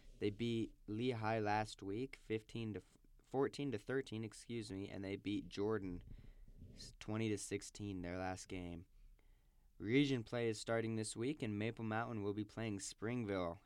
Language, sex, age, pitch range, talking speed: English, male, 10-29, 100-120 Hz, 160 wpm